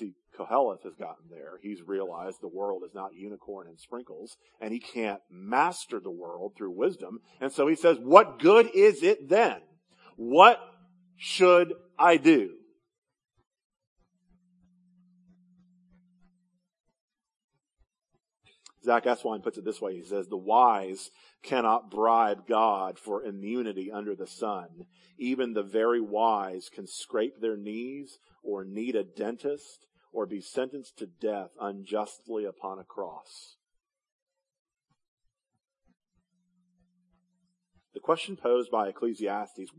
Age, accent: 40-59, American